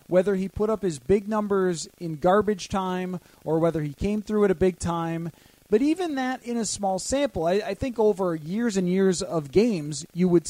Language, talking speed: English, 210 wpm